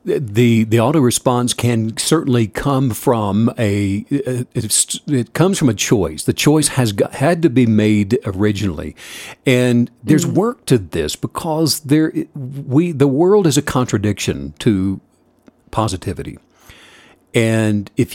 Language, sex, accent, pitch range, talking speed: English, male, American, 105-150 Hz, 135 wpm